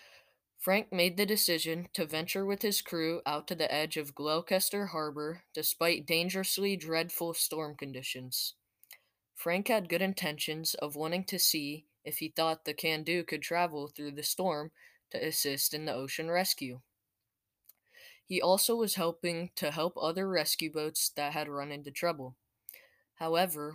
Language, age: English, 20-39